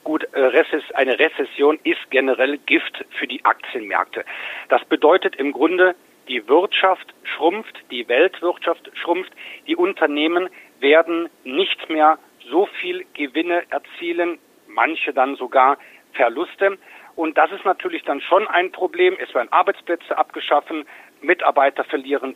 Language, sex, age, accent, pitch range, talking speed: German, male, 50-69, German, 155-200 Hz, 125 wpm